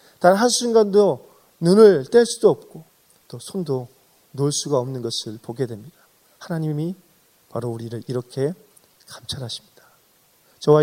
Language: Korean